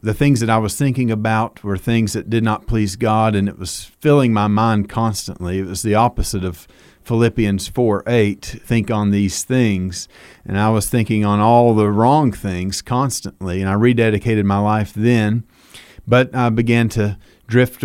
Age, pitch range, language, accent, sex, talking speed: 40-59, 100-120 Hz, English, American, male, 180 wpm